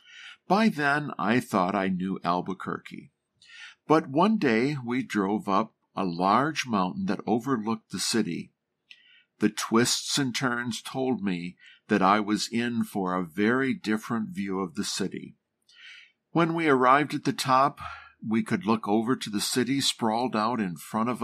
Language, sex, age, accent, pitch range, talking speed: English, male, 50-69, American, 105-135 Hz, 160 wpm